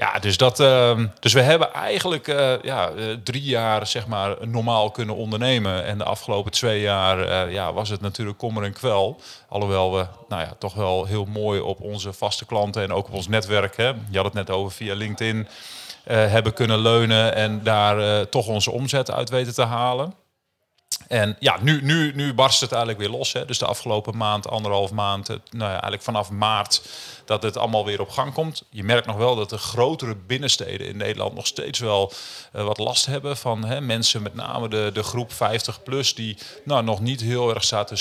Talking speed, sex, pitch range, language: 210 wpm, male, 105-120 Hz, Dutch